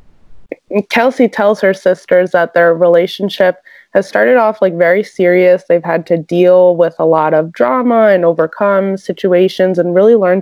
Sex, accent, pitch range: female, American, 170-200 Hz